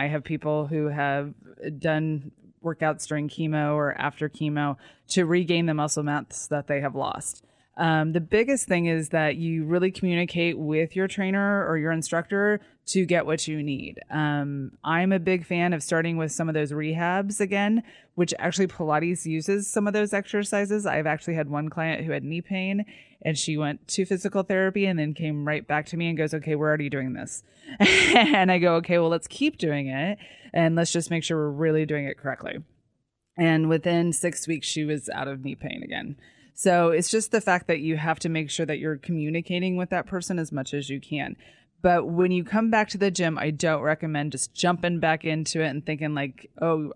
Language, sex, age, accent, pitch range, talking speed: English, female, 20-39, American, 150-175 Hz, 210 wpm